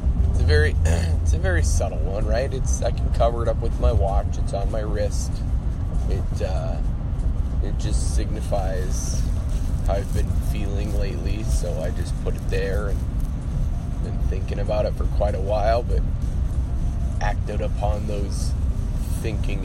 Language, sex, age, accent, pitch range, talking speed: English, male, 20-39, American, 75-95 Hz, 155 wpm